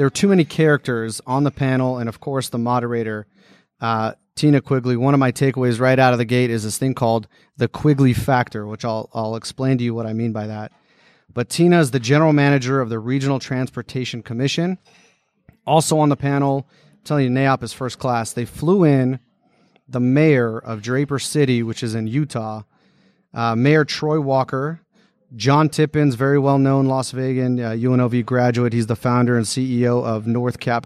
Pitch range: 115-140 Hz